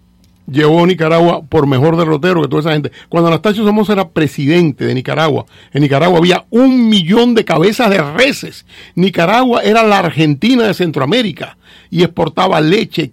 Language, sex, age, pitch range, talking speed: English, male, 50-69, 145-185 Hz, 160 wpm